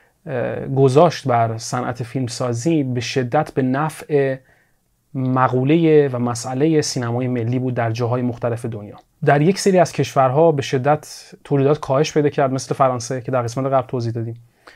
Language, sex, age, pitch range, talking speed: Persian, male, 30-49, 125-155 Hz, 150 wpm